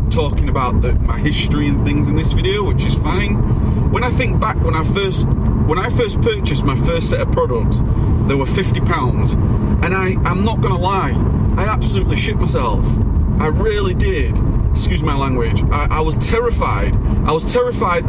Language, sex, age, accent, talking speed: English, male, 30-49, British, 190 wpm